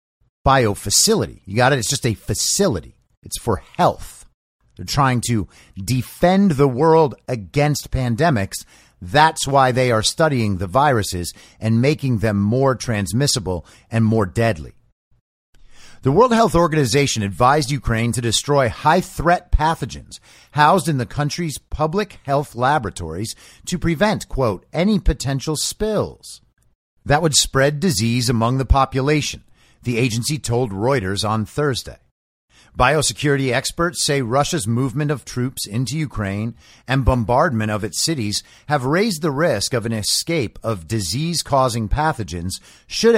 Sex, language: male, English